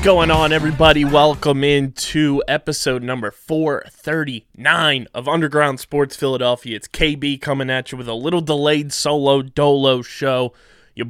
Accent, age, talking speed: American, 20-39, 140 wpm